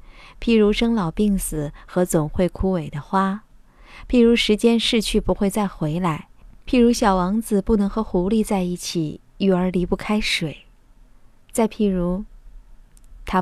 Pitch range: 180-225 Hz